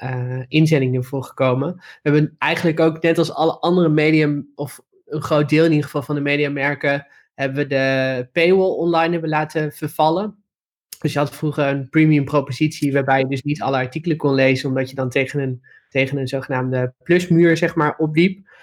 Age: 20-39